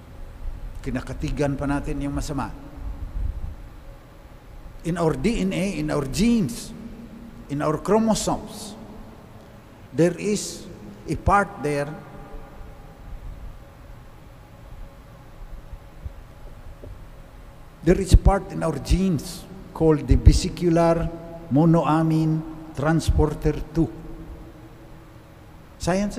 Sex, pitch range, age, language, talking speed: male, 135-185 Hz, 50-69, English, 75 wpm